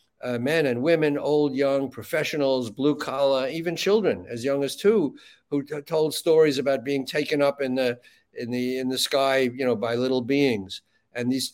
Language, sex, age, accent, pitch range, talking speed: English, male, 60-79, American, 125-160 Hz, 185 wpm